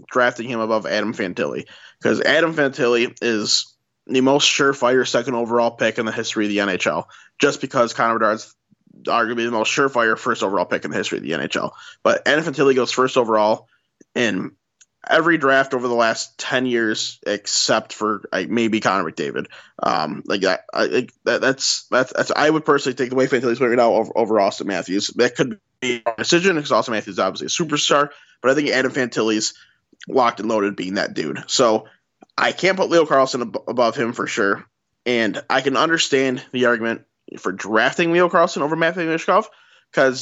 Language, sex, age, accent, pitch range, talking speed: English, male, 20-39, American, 115-140 Hz, 190 wpm